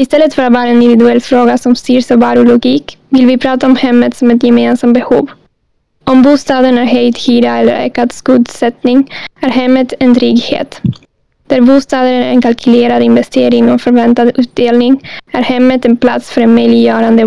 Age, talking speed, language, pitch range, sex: 10-29, 165 wpm, Swedish, 240-260 Hz, female